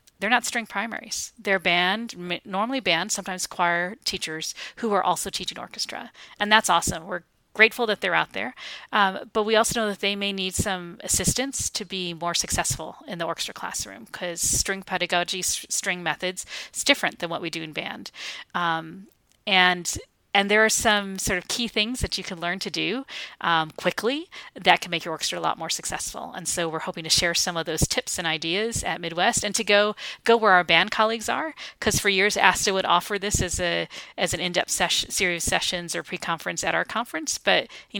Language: English